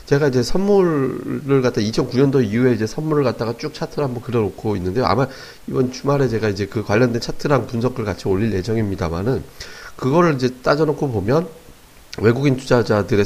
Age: 30-49